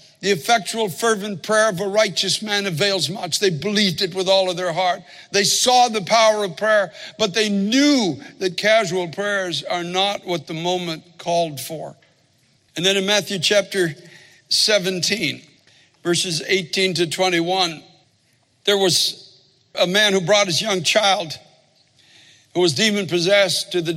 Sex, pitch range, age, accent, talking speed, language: male, 170-200 Hz, 60-79, American, 155 wpm, English